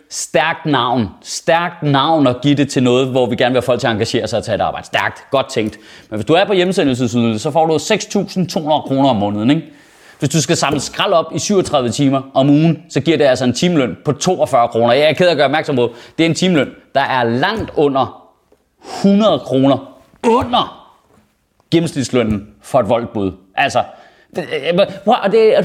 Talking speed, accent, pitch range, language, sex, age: 200 wpm, native, 135-195 Hz, Danish, male, 30-49